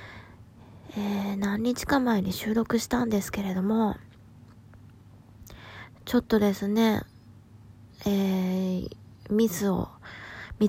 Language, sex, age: Japanese, female, 20-39